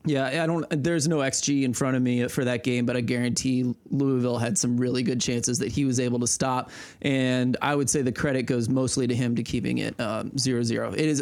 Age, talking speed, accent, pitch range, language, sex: 20-39, 245 wpm, American, 130-160 Hz, English, male